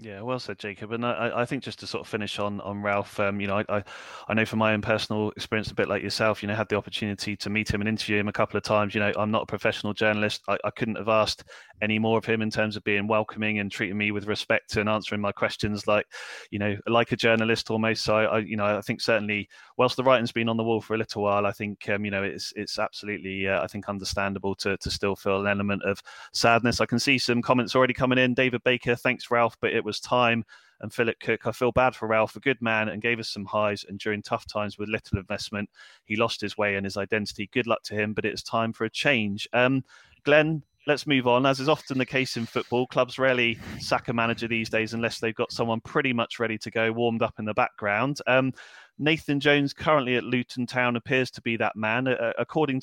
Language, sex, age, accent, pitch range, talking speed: English, male, 20-39, British, 105-120 Hz, 255 wpm